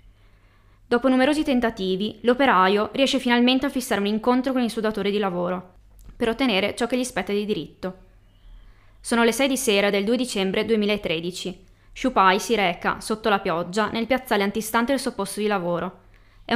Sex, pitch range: female, 180-225 Hz